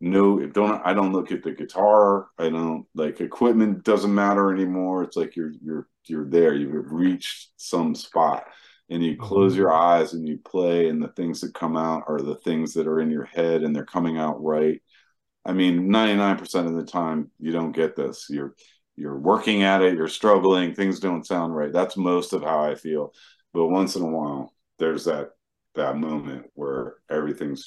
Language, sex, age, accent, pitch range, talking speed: English, male, 40-59, American, 75-95 Hz, 200 wpm